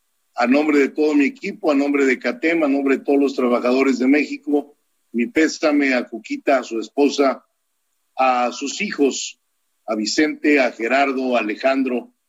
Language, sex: Spanish, male